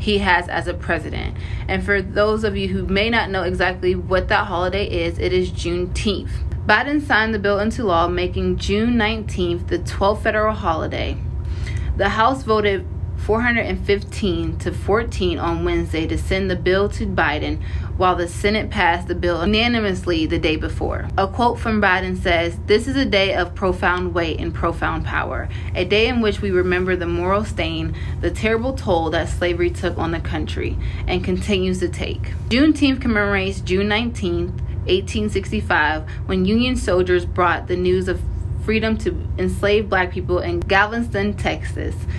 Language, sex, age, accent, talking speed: English, female, 20-39, American, 165 wpm